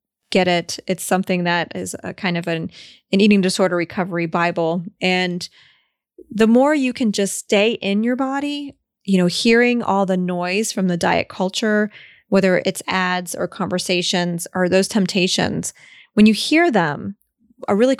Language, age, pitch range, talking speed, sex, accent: English, 20-39, 175-215 Hz, 165 wpm, female, American